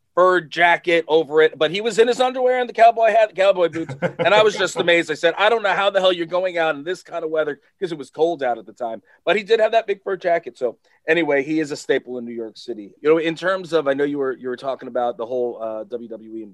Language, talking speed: English, 290 wpm